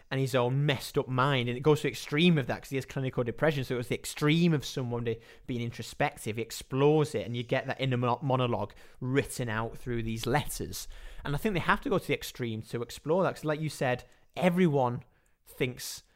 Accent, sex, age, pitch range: British, male, 30-49, 115-140 Hz